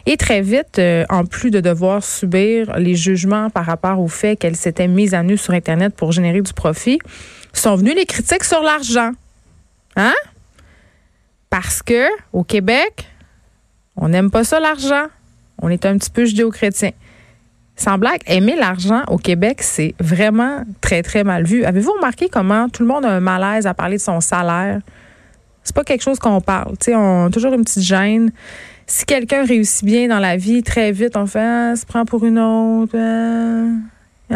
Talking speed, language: 185 wpm, French